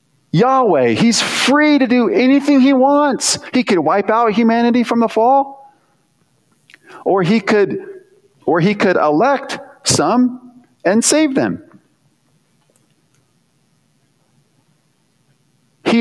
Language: English